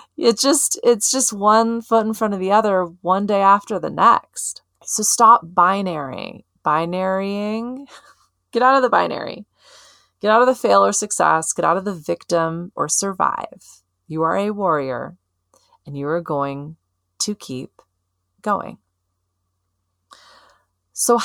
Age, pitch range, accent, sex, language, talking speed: 30-49, 135-205 Hz, American, female, English, 145 wpm